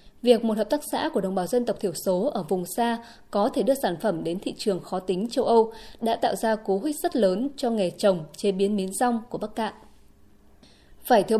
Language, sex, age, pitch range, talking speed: Vietnamese, female, 20-39, 195-260 Hz, 240 wpm